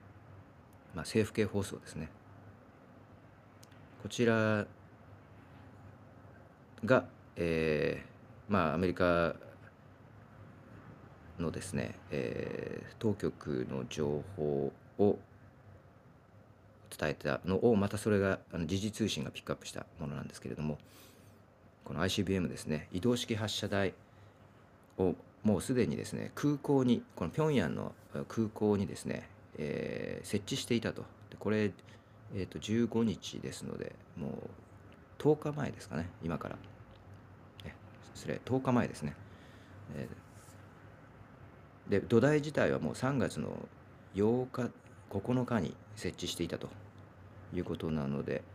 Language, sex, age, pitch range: Japanese, male, 40-59, 95-115 Hz